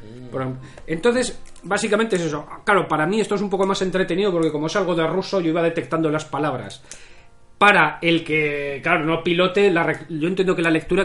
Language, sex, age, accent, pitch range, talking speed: Spanish, male, 30-49, Spanish, 140-185 Hz, 190 wpm